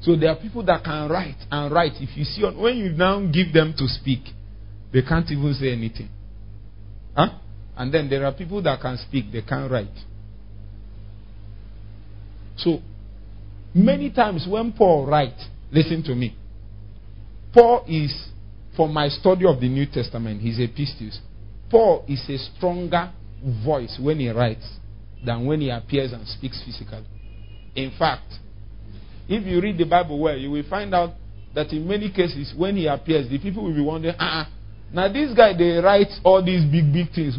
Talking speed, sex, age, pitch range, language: 170 wpm, male, 50-69, 105-165 Hz, English